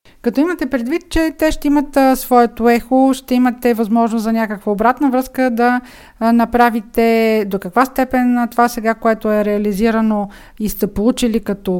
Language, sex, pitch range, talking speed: Bulgarian, female, 215-260 Hz, 155 wpm